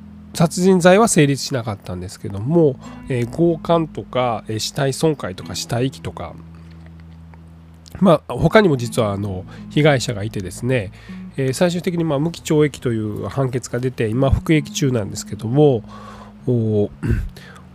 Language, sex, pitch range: Japanese, male, 105-155 Hz